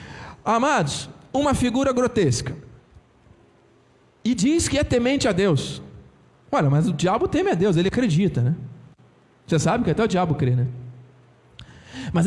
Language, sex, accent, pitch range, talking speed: Portuguese, male, Brazilian, 145-235 Hz, 145 wpm